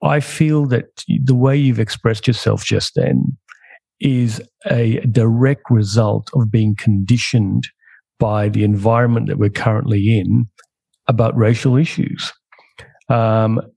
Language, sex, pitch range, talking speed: English, male, 115-145 Hz, 120 wpm